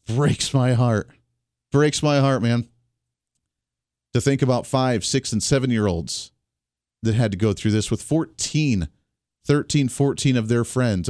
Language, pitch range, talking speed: English, 110-140 Hz, 145 wpm